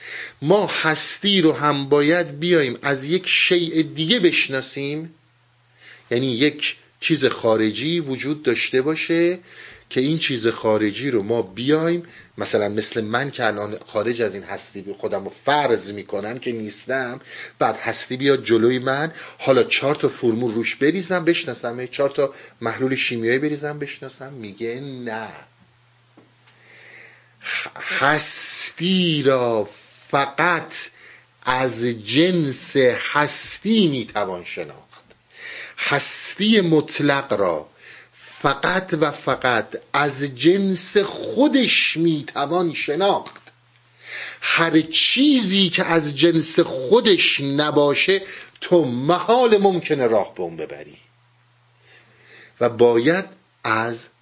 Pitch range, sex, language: 120-170 Hz, male, Persian